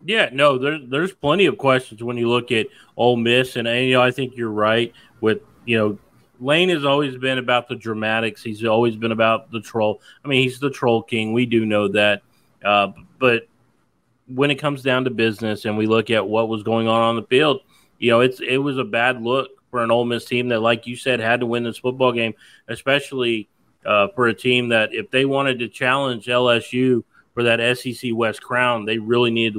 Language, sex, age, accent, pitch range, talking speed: English, male, 30-49, American, 110-125 Hz, 220 wpm